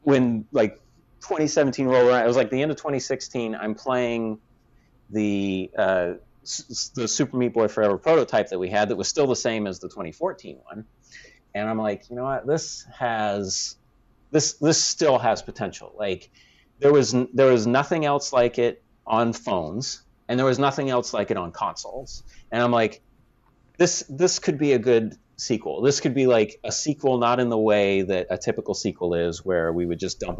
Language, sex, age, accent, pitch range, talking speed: English, male, 30-49, American, 100-125 Hz, 190 wpm